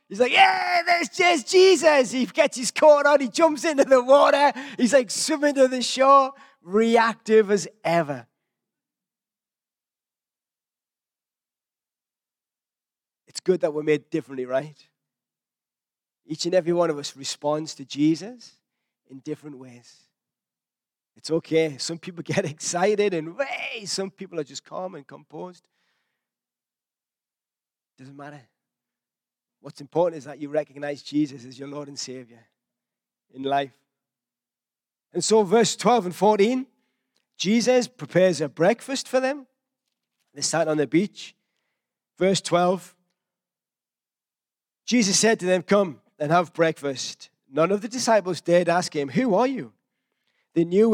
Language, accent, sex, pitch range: English, British, male, 145-230 Hz